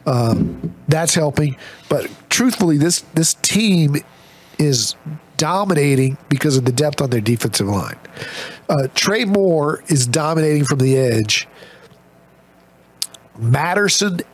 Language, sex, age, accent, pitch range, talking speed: English, male, 50-69, American, 130-175 Hz, 115 wpm